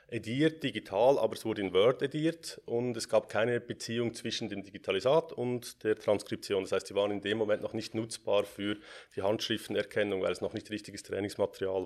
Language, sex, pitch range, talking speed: German, male, 100-120 Hz, 190 wpm